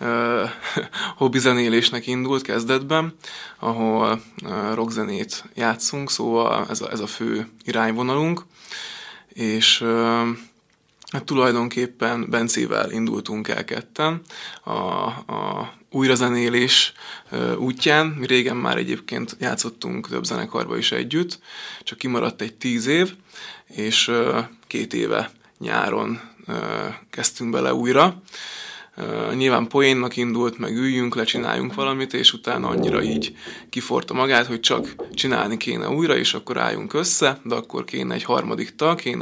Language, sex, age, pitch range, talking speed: Hungarian, male, 20-39, 115-145 Hz, 110 wpm